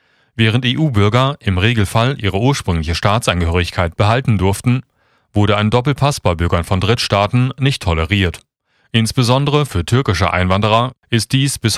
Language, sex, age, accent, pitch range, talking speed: German, male, 30-49, German, 95-125 Hz, 125 wpm